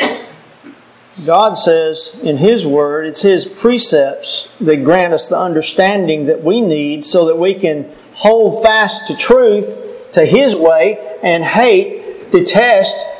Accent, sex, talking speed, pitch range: American, male, 135 wpm, 170-225 Hz